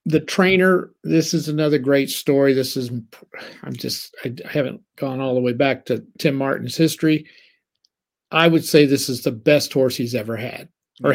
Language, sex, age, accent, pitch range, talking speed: English, male, 50-69, American, 135-175 Hz, 185 wpm